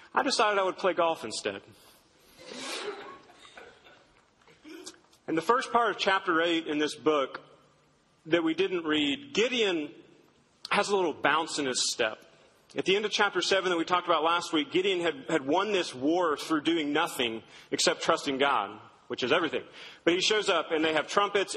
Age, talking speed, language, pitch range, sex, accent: 40-59, 180 wpm, English, 175-235 Hz, male, American